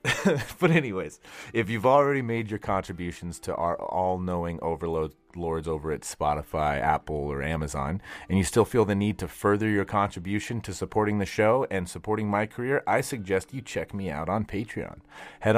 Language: English